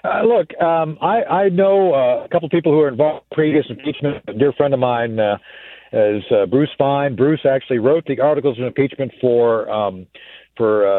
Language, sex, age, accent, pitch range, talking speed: English, male, 50-69, American, 125-170 Hz, 200 wpm